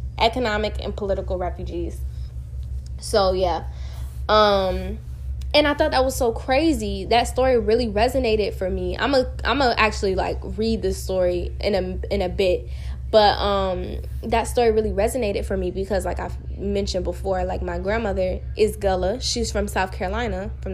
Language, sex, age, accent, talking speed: English, female, 10-29, American, 165 wpm